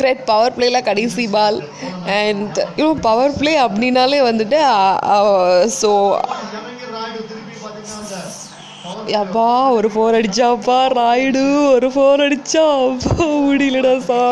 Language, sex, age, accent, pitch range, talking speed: Tamil, female, 20-39, native, 195-230 Hz, 85 wpm